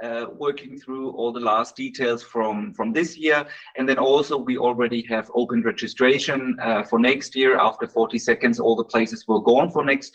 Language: English